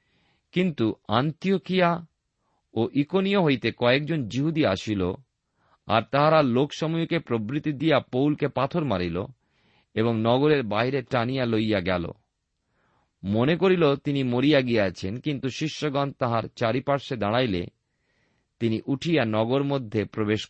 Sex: male